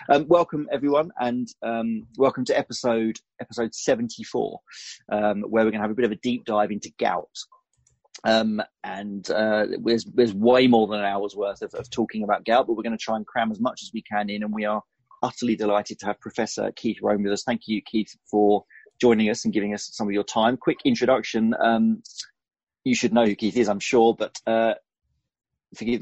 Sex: male